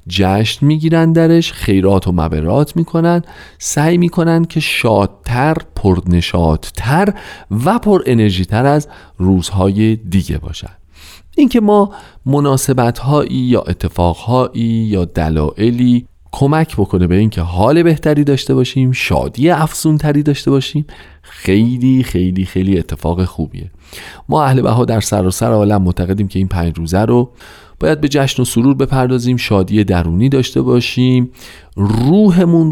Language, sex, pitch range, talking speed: Persian, male, 95-150 Hz, 125 wpm